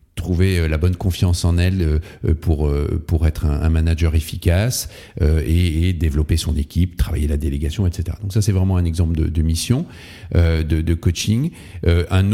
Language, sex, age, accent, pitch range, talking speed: French, male, 40-59, French, 85-105 Hz, 170 wpm